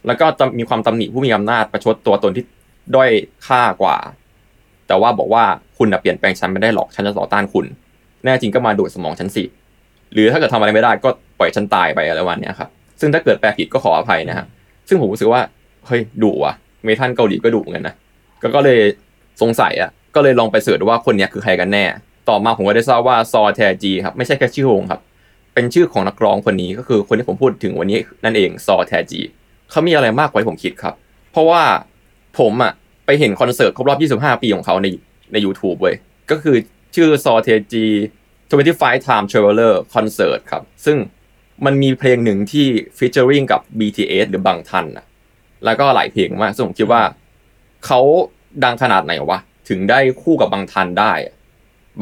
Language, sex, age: Thai, male, 20-39